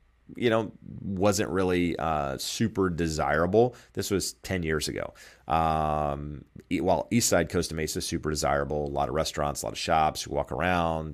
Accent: American